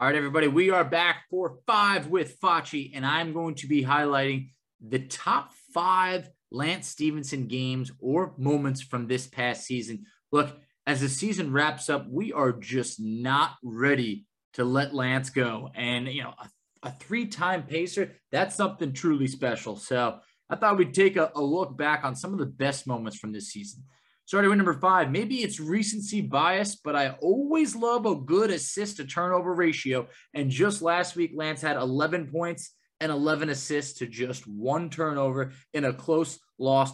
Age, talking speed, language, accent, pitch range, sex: 20-39, 175 wpm, English, American, 130-175 Hz, male